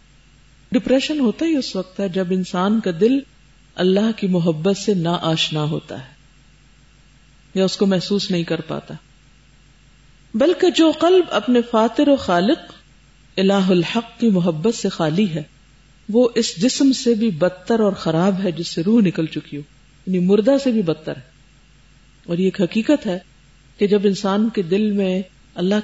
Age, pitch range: 50-69, 175-240 Hz